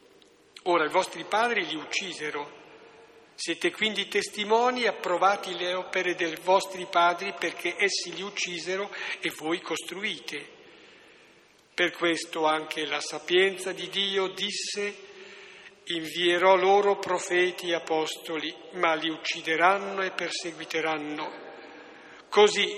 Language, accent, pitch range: Italian, native, 165-200 Hz